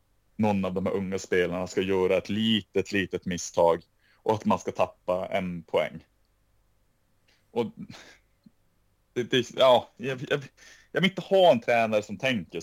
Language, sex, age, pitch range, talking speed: Swedish, male, 30-49, 95-130 Hz, 130 wpm